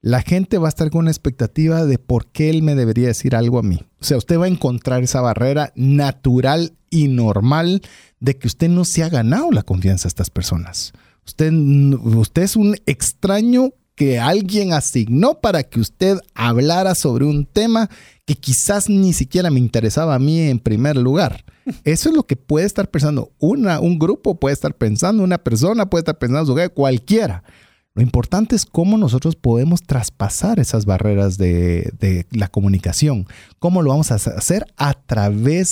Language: Spanish